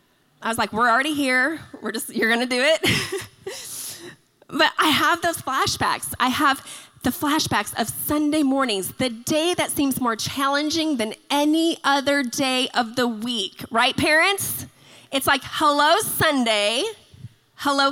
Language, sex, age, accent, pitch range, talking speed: English, female, 20-39, American, 230-300 Hz, 150 wpm